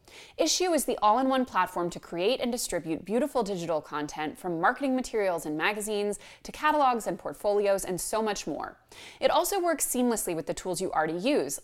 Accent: American